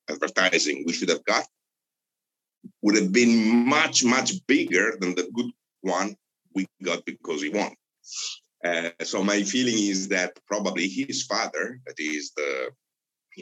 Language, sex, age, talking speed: English, male, 50-69, 150 wpm